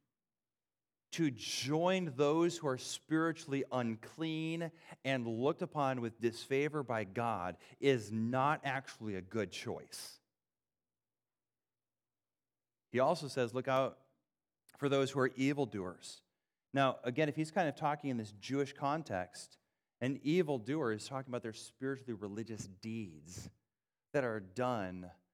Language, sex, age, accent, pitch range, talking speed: English, male, 40-59, American, 120-170 Hz, 125 wpm